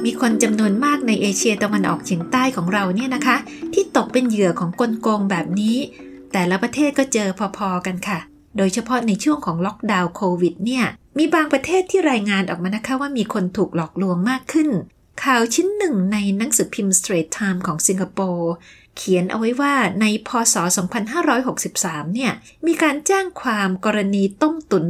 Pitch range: 185-255 Hz